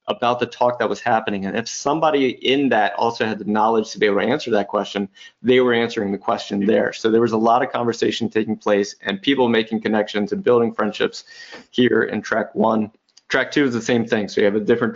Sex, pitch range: male, 110-130 Hz